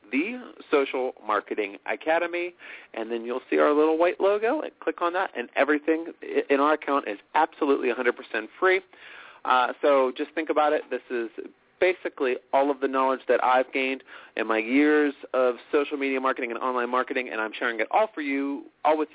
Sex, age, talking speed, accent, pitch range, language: male, 30-49, 190 wpm, American, 120-170 Hz, English